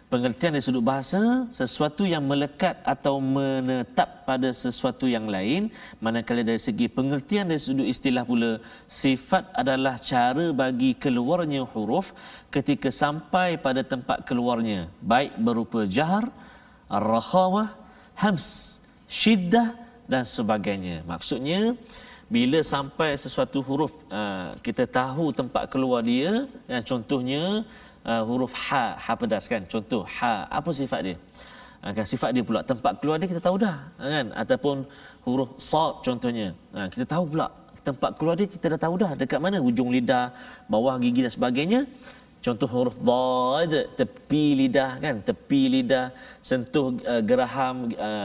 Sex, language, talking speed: male, Malayalam, 135 wpm